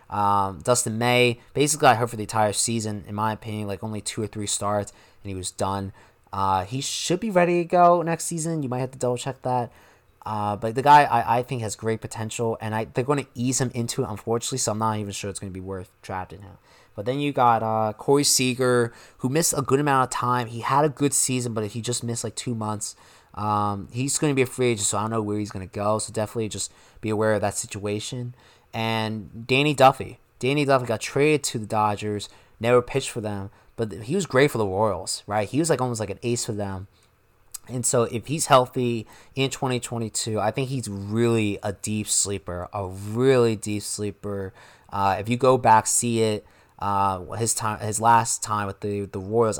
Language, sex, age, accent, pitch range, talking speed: English, male, 20-39, American, 105-125 Hz, 230 wpm